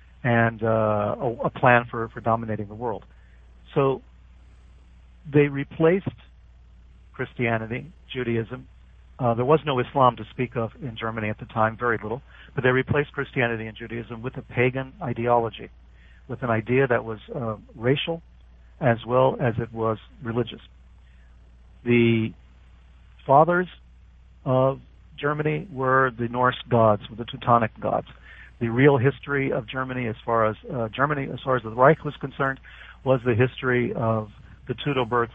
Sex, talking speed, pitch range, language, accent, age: male, 150 wpm, 110-130 Hz, English, American, 50-69